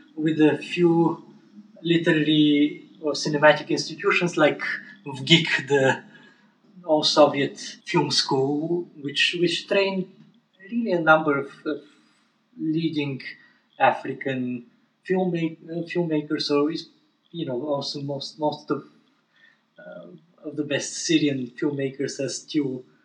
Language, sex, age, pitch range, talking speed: English, male, 20-39, 135-165 Hz, 110 wpm